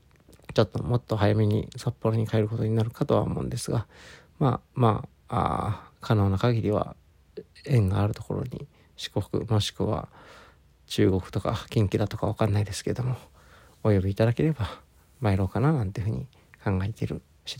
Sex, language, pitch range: male, Japanese, 95-115 Hz